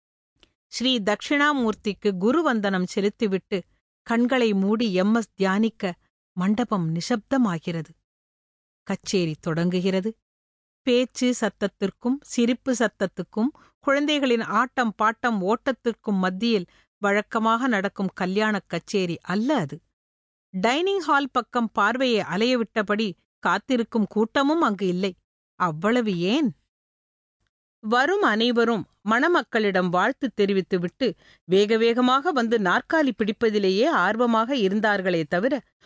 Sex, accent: female, Indian